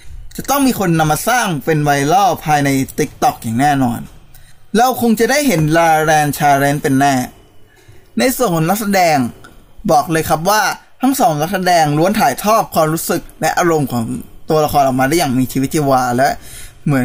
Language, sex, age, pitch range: Thai, male, 20-39, 130-190 Hz